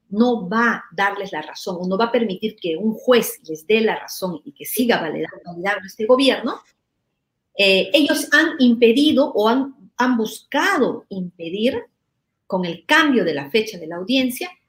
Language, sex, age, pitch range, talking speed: Spanish, female, 40-59, 185-250 Hz, 170 wpm